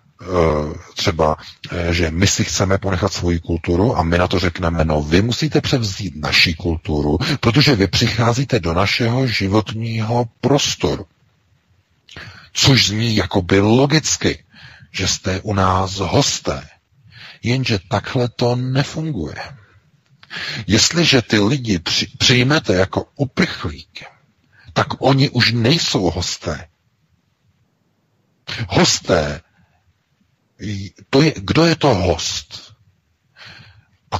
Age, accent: 50-69, native